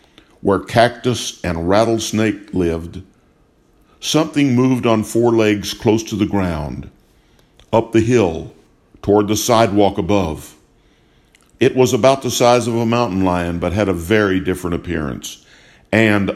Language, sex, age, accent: English, male, 60-79, American